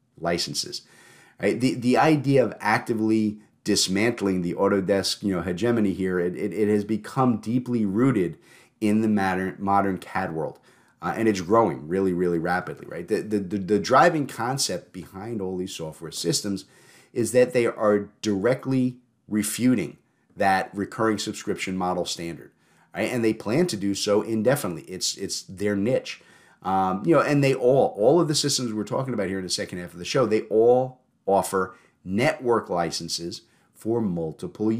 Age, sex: 30-49, male